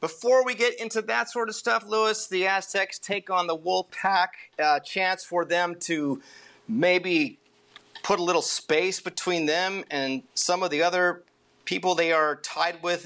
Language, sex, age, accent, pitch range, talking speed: English, male, 40-59, American, 140-185 Hz, 175 wpm